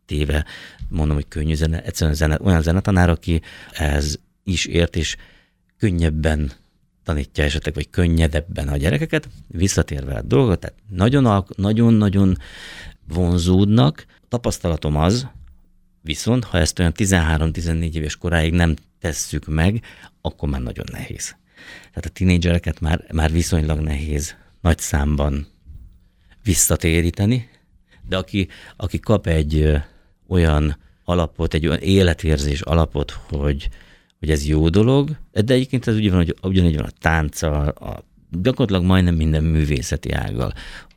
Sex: male